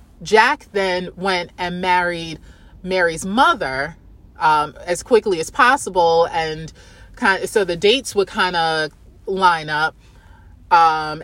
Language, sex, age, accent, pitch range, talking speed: English, female, 30-49, American, 160-220 Hz, 130 wpm